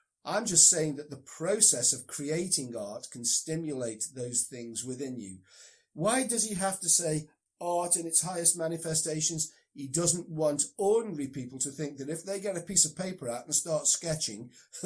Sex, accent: male, British